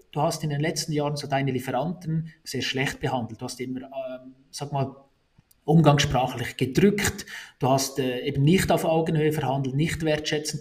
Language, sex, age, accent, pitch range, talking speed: German, male, 30-49, Austrian, 135-165 Hz, 170 wpm